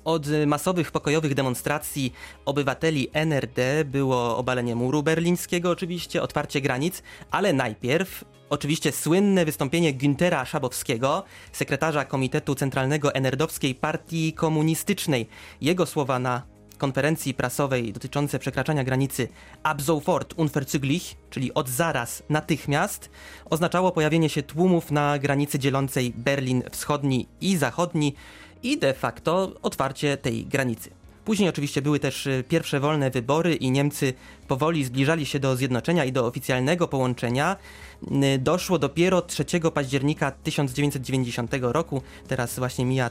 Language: Polish